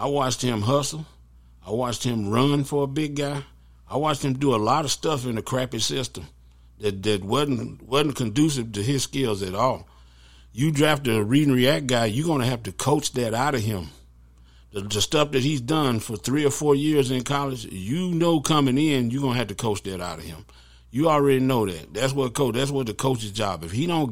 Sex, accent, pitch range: male, American, 100-140 Hz